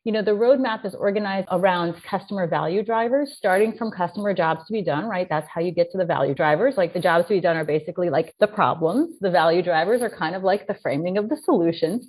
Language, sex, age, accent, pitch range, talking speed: English, female, 30-49, American, 165-215 Hz, 245 wpm